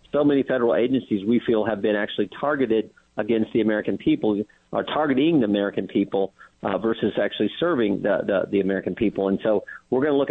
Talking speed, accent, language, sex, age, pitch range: 200 wpm, American, English, male, 50-69, 120-185 Hz